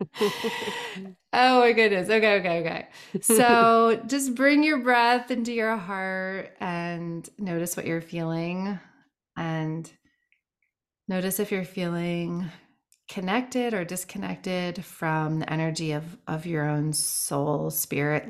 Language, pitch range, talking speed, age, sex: English, 155-190 Hz, 120 wpm, 30-49, female